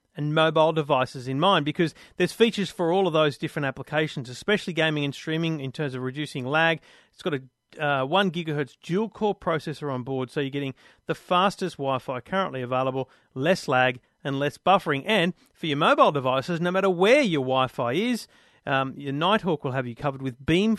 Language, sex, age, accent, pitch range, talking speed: English, male, 40-59, Australian, 135-175 Hz, 200 wpm